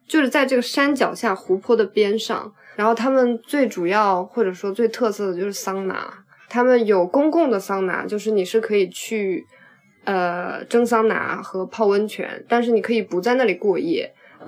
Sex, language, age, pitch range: female, Chinese, 20-39, 195-245 Hz